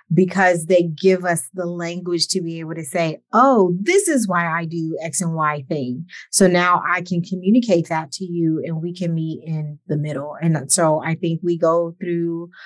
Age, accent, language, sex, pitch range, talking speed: 30-49, American, English, female, 160-185 Hz, 205 wpm